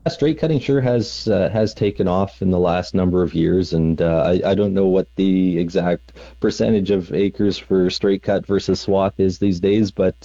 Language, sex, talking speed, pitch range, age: English, male, 205 wpm, 90-100 Hz, 30-49